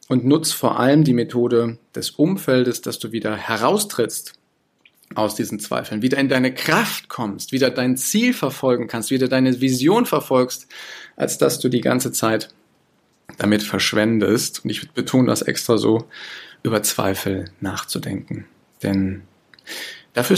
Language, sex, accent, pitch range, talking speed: German, male, German, 115-150 Hz, 140 wpm